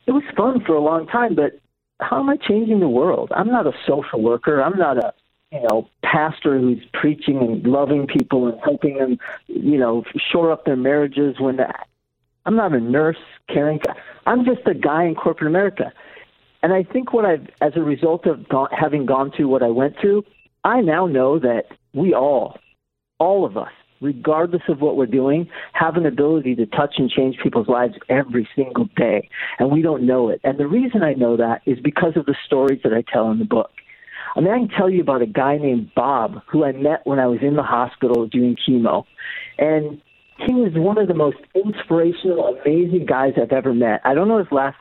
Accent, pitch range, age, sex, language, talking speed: American, 130-170 Hz, 50-69, male, English, 210 wpm